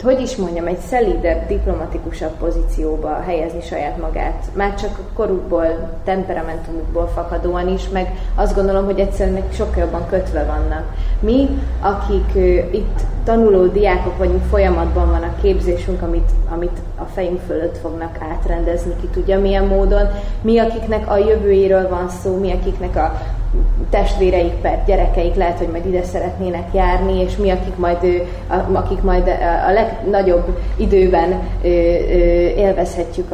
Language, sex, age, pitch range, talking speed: Hungarian, female, 20-39, 170-200 Hz, 135 wpm